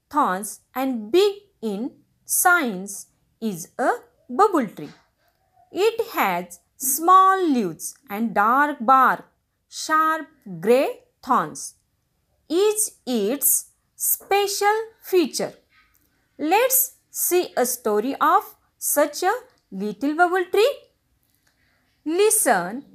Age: 30-49